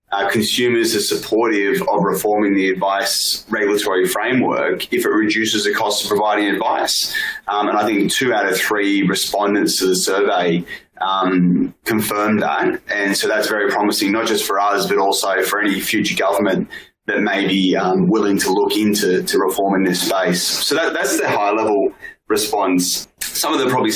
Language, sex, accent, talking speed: English, male, Australian, 180 wpm